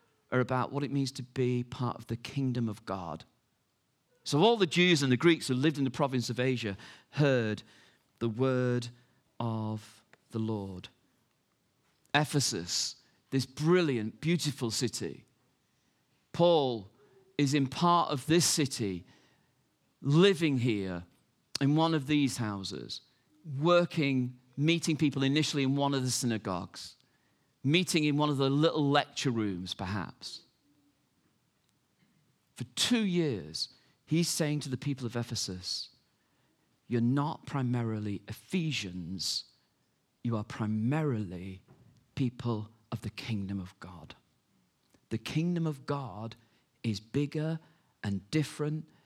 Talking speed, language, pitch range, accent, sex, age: 125 wpm, English, 110-150 Hz, British, male, 40-59